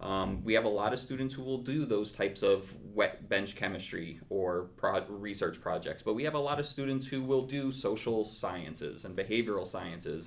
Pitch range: 95-115 Hz